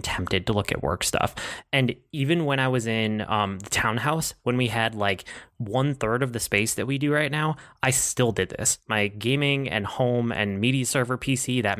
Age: 20-39